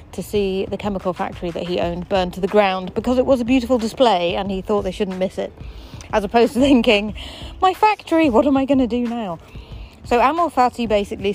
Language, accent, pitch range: English, British, 185-230 Hz